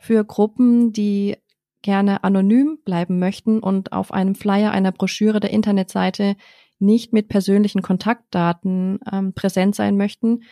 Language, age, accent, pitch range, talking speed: German, 30-49, German, 170-200 Hz, 130 wpm